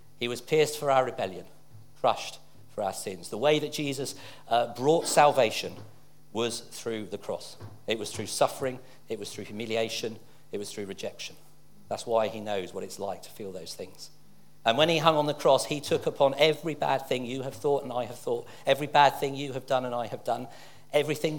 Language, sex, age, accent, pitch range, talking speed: English, male, 50-69, British, 115-150 Hz, 210 wpm